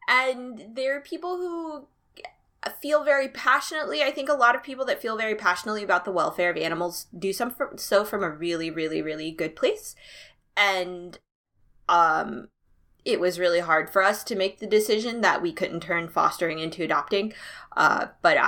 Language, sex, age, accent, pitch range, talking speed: English, female, 20-39, American, 165-225 Hz, 170 wpm